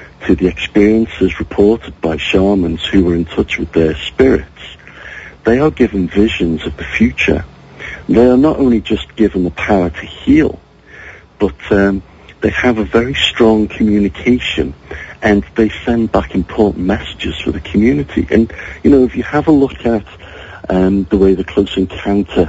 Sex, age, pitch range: male, 60-79, 85-110 Hz